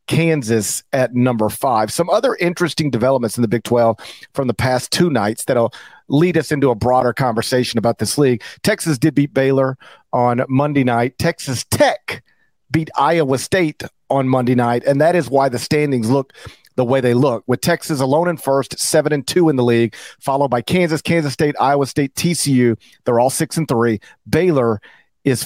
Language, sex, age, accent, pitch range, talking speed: English, male, 40-59, American, 125-155 Hz, 185 wpm